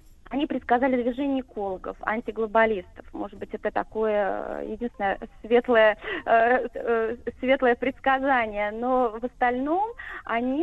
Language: Russian